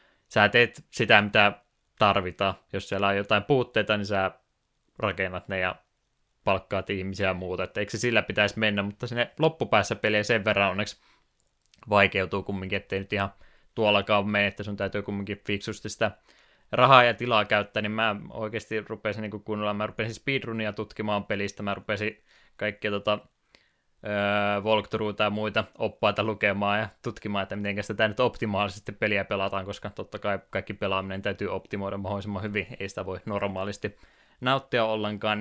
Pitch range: 100-110 Hz